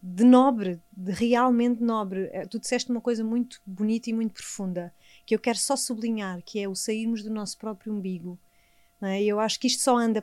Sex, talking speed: female, 205 wpm